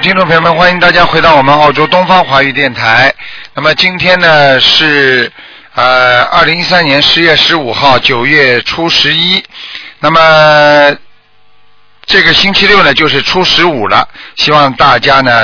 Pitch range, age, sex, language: 125-165 Hz, 50-69, male, Chinese